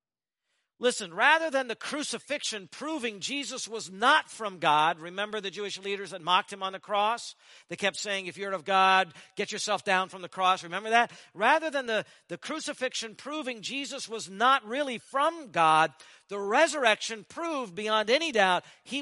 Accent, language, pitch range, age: American, English, 165-250 Hz, 50-69